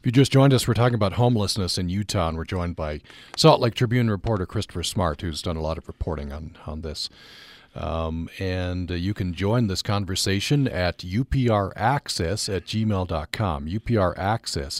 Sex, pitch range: male, 85-110 Hz